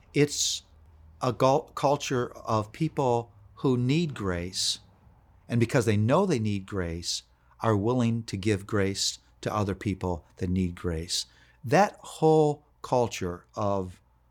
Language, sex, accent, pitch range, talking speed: English, male, American, 85-125 Hz, 125 wpm